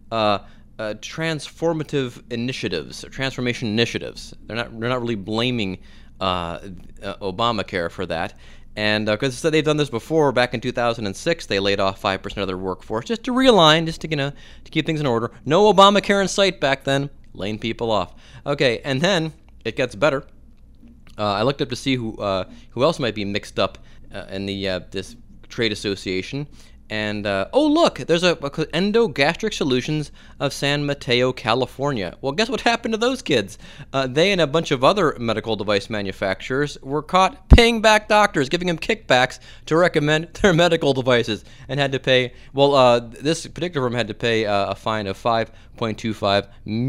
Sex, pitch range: male, 110-160 Hz